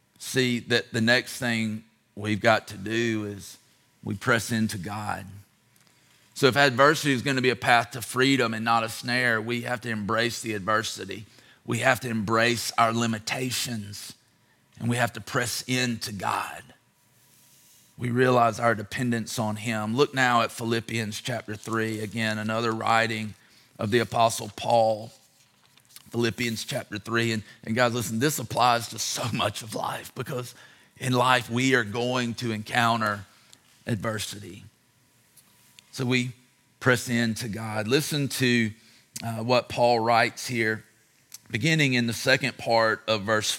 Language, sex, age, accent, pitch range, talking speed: English, male, 40-59, American, 110-125 Hz, 150 wpm